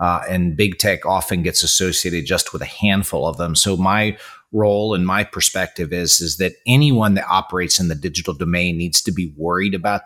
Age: 40-59